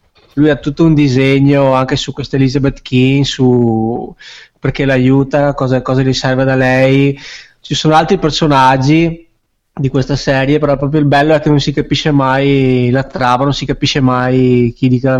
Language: Italian